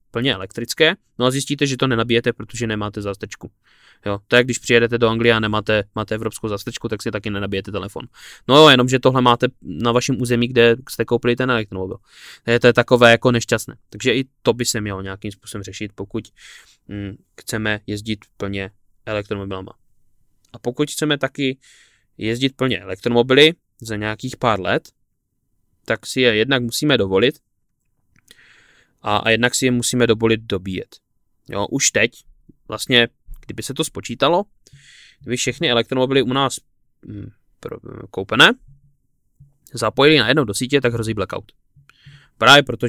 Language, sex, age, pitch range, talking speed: Czech, male, 20-39, 105-130 Hz, 155 wpm